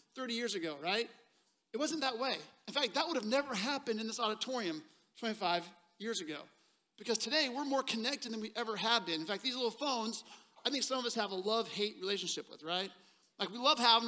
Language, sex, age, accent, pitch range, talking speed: English, male, 40-59, American, 210-265 Hz, 215 wpm